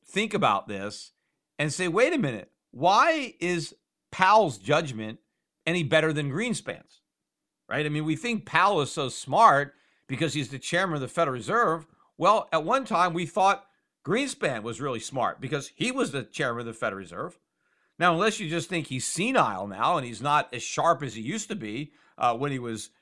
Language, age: English, 50-69